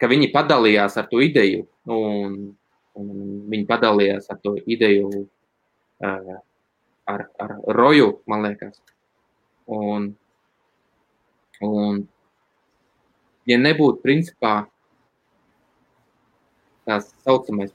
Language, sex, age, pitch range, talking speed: English, male, 20-39, 105-125 Hz, 90 wpm